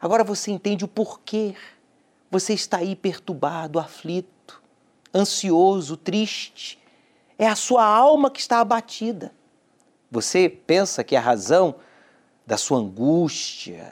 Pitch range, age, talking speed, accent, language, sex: 155-235 Hz, 40-59, 115 wpm, Brazilian, Portuguese, male